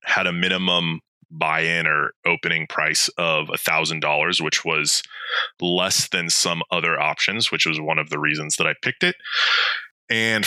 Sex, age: male, 20-39